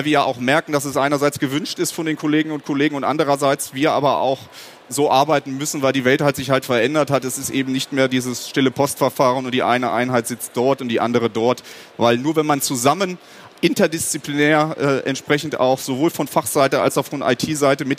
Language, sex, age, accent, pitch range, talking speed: German, male, 30-49, German, 135-155 Hz, 220 wpm